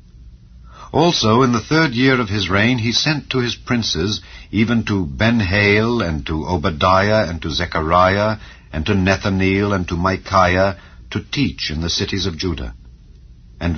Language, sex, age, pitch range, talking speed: English, male, 60-79, 80-110 Hz, 160 wpm